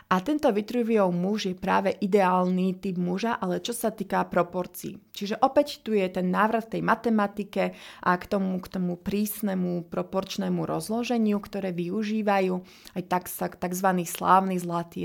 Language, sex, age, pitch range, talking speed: Slovak, female, 30-49, 180-210 Hz, 145 wpm